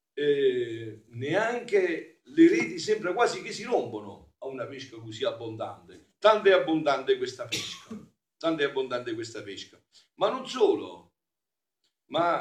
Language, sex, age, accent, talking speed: Italian, male, 50-69, native, 135 wpm